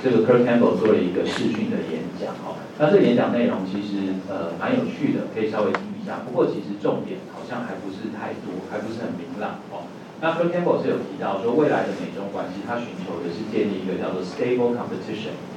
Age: 40-59